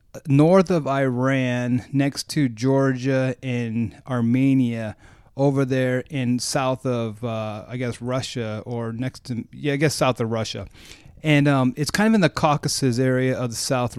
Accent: American